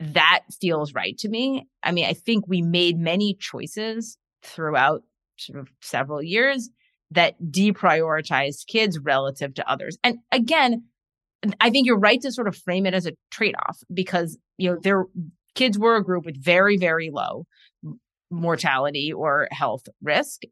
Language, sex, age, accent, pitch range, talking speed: English, female, 30-49, American, 155-205 Hz, 160 wpm